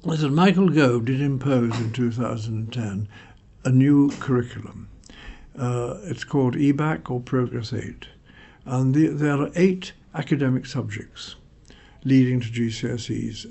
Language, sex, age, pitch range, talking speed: English, male, 60-79, 115-140 Hz, 125 wpm